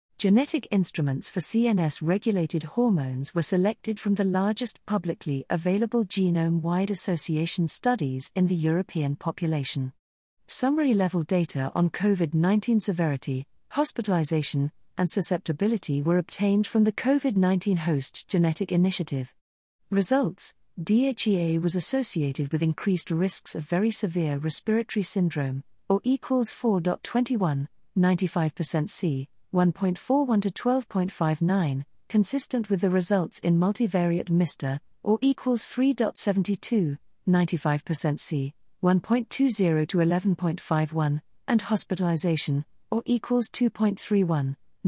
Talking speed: 100 wpm